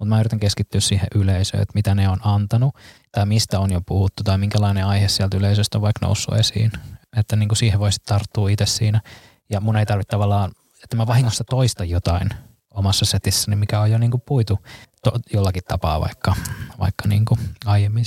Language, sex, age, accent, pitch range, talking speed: Finnish, male, 20-39, native, 100-115 Hz, 195 wpm